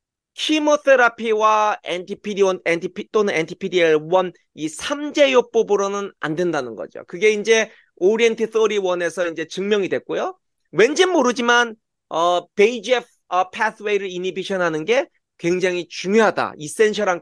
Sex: male